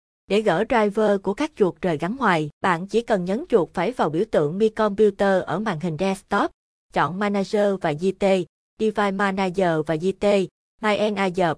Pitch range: 185-225 Hz